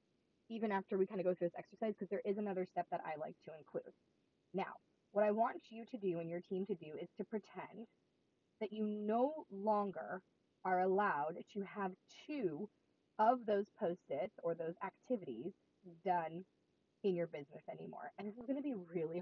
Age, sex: 20-39, female